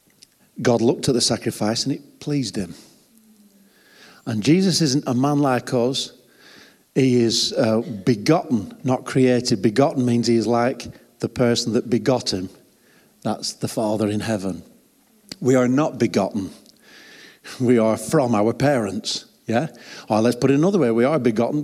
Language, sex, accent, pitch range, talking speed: English, male, British, 105-130 Hz, 155 wpm